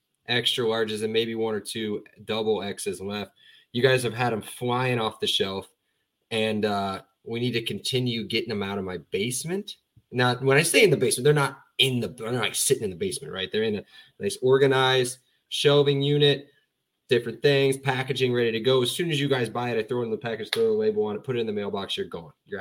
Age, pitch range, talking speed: 20-39, 115-140 Hz, 235 wpm